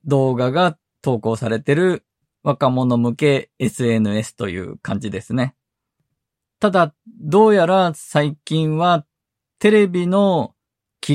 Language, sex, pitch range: Japanese, male, 125-170 Hz